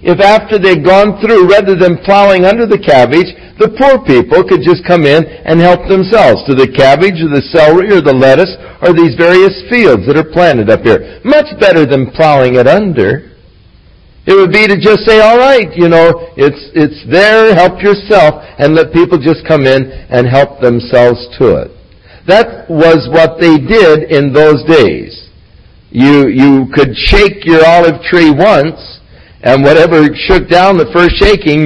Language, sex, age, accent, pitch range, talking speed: English, male, 60-79, American, 130-180 Hz, 180 wpm